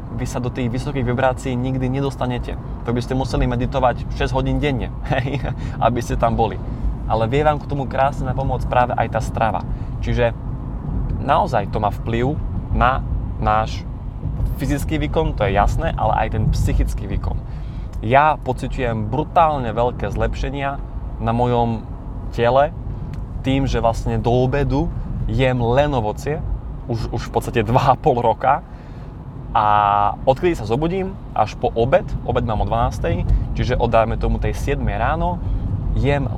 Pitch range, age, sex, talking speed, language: 105-130 Hz, 20-39, male, 145 wpm, Slovak